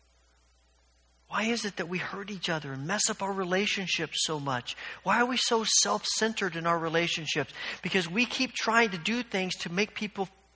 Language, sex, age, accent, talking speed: English, male, 50-69, American, 190 wpm